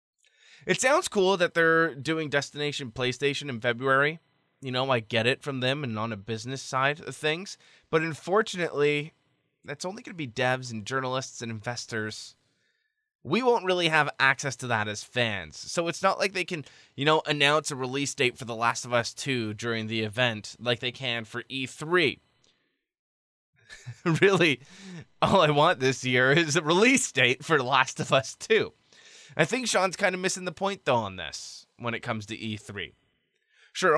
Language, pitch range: English, 125-170 Hz